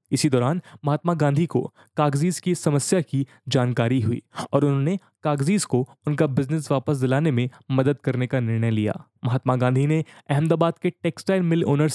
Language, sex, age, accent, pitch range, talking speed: English, male, 20-39, Indian, 130-160 Hz, 165 wpm